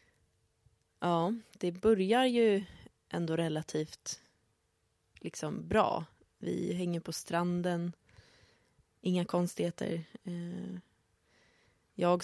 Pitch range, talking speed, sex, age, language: 155-180 Hz, 70 wpm, female, 20-39, Swedish